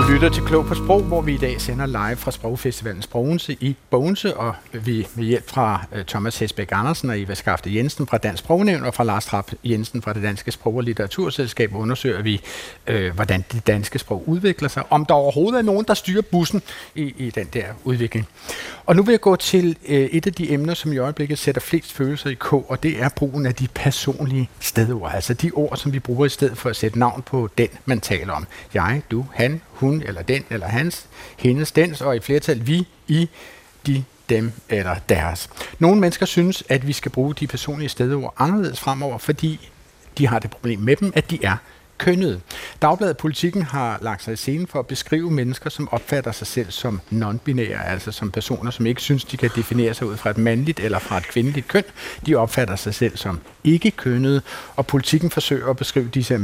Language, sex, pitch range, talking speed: Danish, male, 115-150 Hz, 210 wpm